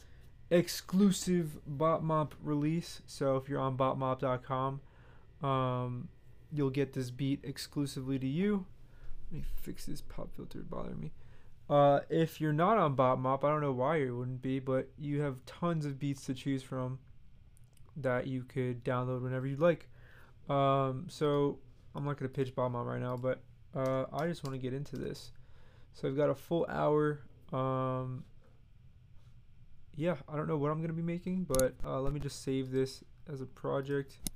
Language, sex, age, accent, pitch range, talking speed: English, male, 20-39, American, 120-145 Hz, 170 wpm